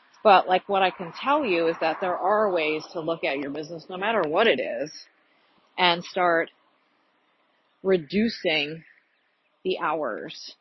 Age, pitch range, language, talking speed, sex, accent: 30-49, 155-215 Hz, English, 155 wpm, female, American